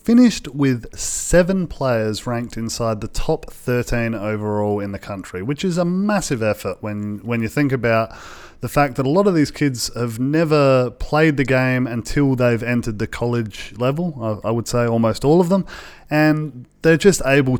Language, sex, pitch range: English, male, 110-135 Hz